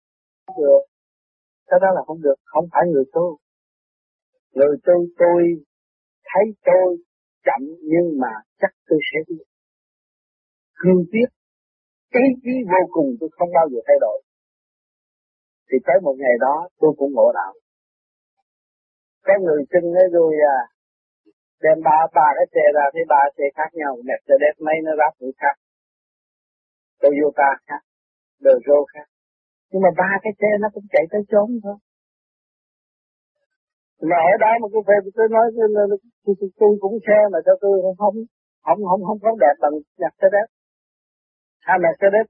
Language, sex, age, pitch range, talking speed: Vietnamese, male, 30-49, 155-230 Hz, 160 wpm